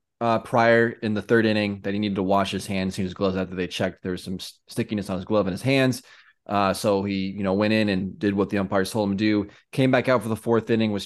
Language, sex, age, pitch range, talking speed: English, male, 20-39, 95-110 Hz, 280 wpm